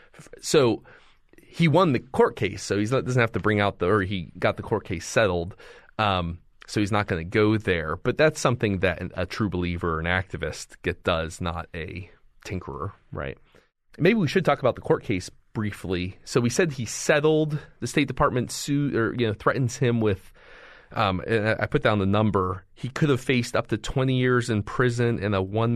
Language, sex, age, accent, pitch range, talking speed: English, male, 30-49, American, 95-120 Hz, 205 wpm